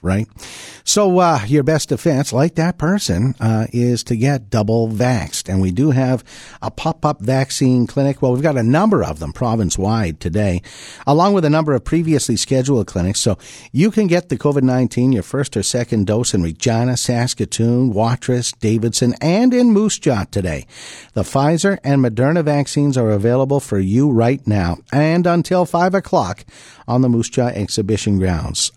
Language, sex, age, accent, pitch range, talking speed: English, male, 50-69, American, 110-150 Hz, 170 wpm